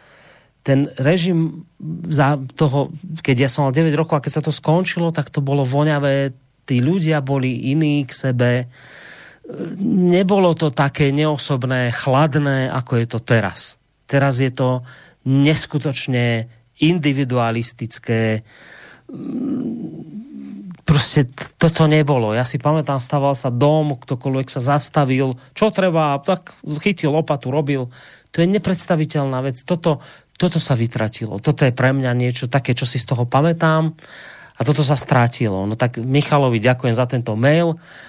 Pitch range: 125-150 Hz